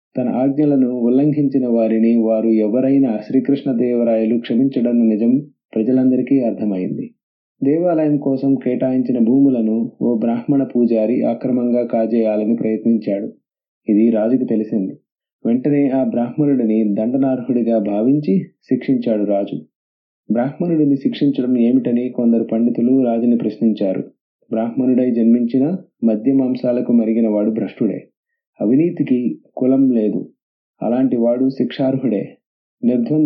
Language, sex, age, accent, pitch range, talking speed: English, male, 30-49, Indian, 115-135 Hz, 80 wpm